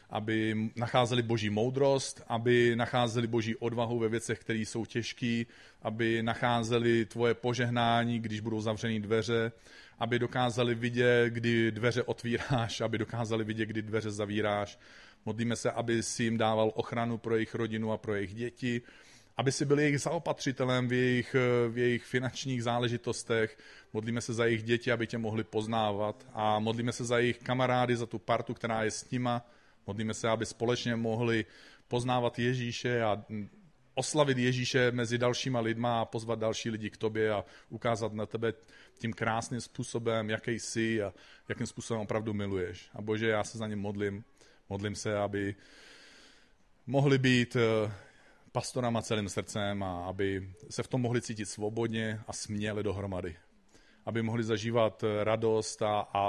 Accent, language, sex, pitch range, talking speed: native, Czech, male, 110-120 Hz, 155 wpm